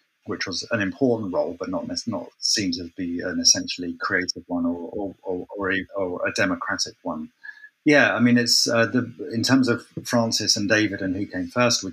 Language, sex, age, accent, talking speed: English, male, 30-49, British, 205 wpm